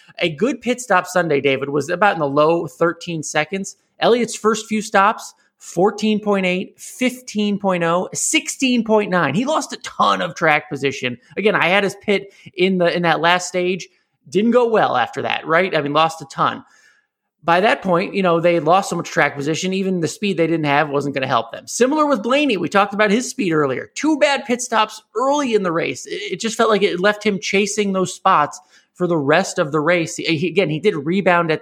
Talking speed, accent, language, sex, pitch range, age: 205 wpm, American, English, male, 160-215 Hz, 20-39